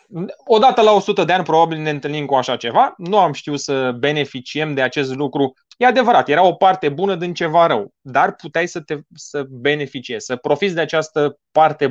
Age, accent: 20-39, native